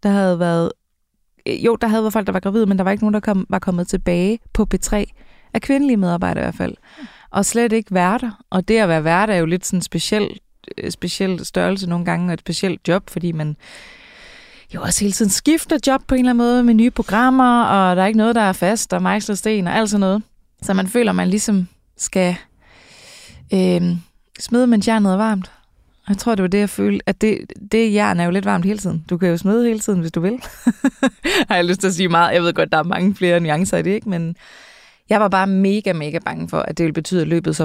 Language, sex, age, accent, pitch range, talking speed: Danish, female, 20-39, native, 180-220 Hz, 245 wpm